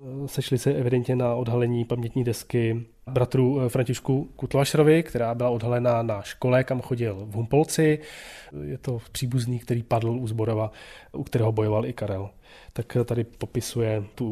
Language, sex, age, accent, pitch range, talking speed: Czech, male, 20-39, native, 115-135 Hz, 145 wpm